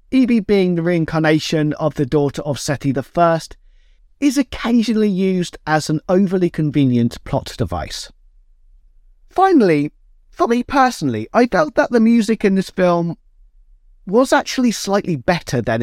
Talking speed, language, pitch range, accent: 140 wpm, English, 150-240 Hz, British